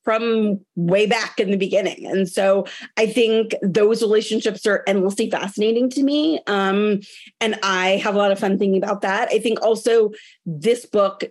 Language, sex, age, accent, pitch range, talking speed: English, female, 30-49, American, 195-230 Hz, 175 wpm